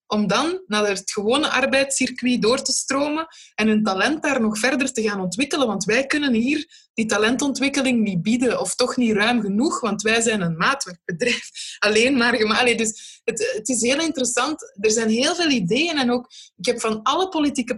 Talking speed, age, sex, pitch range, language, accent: 190 wpm, 20-39, female, 210-270 Hz, Dutch, Dutch